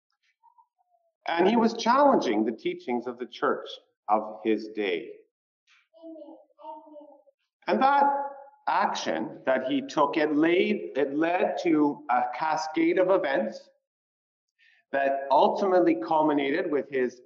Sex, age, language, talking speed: male, 40-59, English, 110 wpm